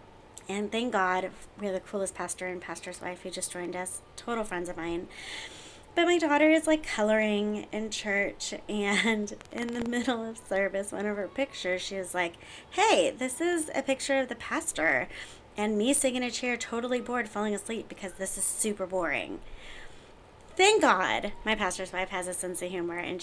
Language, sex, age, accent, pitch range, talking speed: English, female, 20-39, American, 180-225 Hz, 190 wpm